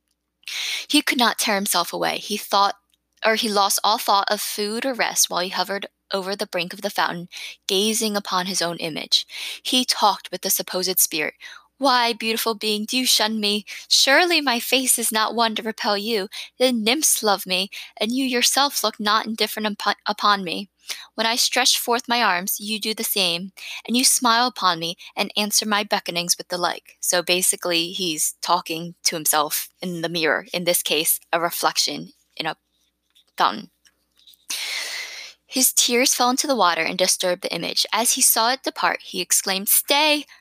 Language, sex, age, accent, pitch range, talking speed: English, female, 20-39, American, 185-235 Hz, 180 wpm